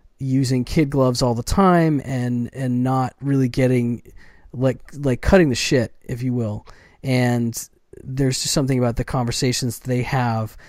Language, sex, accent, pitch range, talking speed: English, male, American, 120-135 Hz, 155 wpm